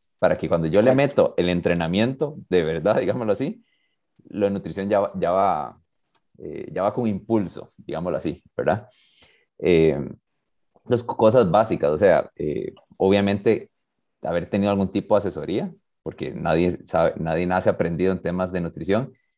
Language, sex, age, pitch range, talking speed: Spanish, male, 30-49, 85-110 Hz, 160 wpm